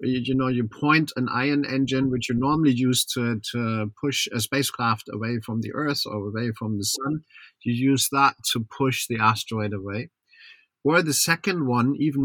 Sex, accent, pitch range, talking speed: male, German, 115-140 Hz, 185 wpm